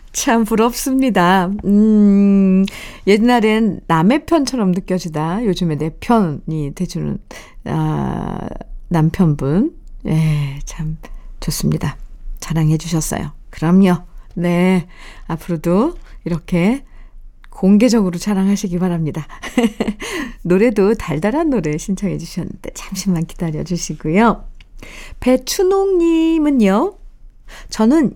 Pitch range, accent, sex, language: 165-235 Hz, native, female, Korean